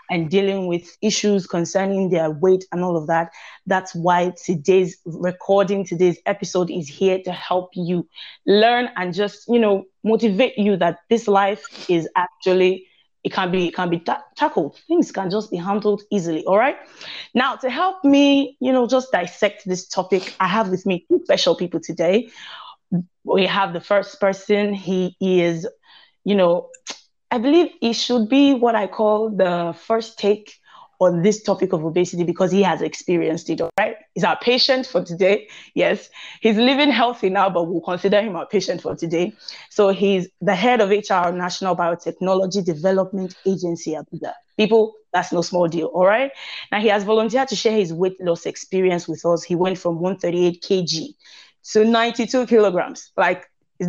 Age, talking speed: 20-39, 180 wpm